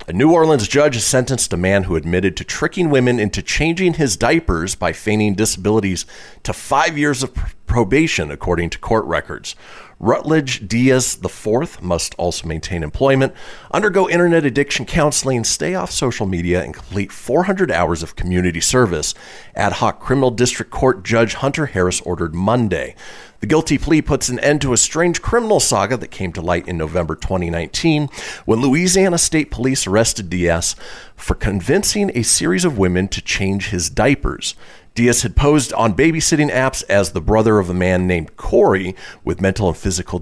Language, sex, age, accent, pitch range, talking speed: English, male, 40-59, American, 90-135 Hz, 170 wpm